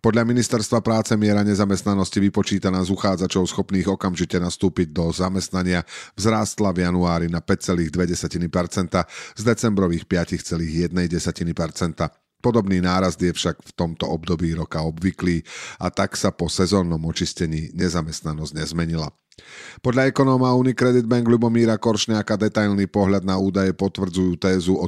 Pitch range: 90-110 Hz